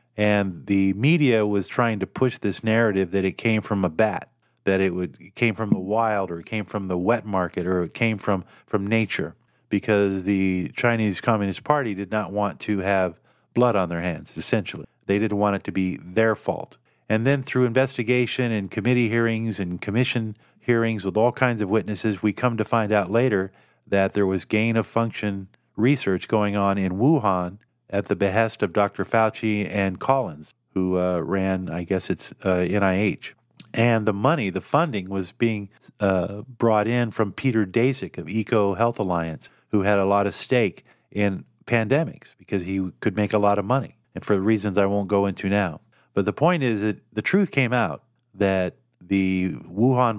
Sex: male